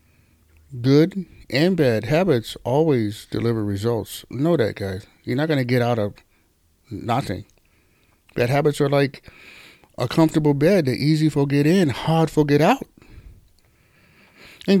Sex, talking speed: male, 140 wpm